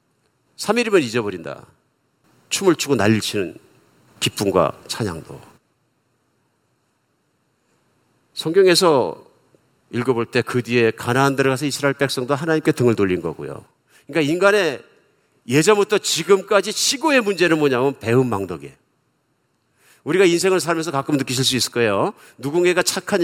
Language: Korean